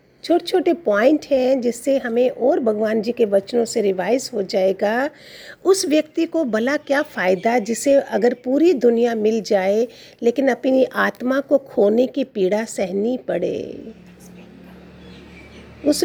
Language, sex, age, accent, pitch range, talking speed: Hindi, female, 50-69, native, 235-310 Hz, 140 wpm